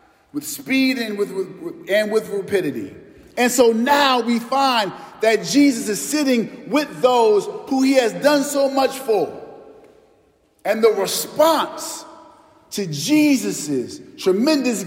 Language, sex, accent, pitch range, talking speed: English, male, American, 195-275 Hz, 130 wpm